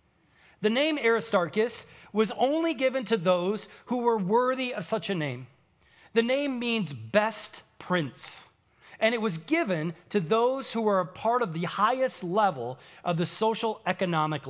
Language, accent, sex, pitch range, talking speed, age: English, American, male, 170-230 Hz, 155 wpm, 40-59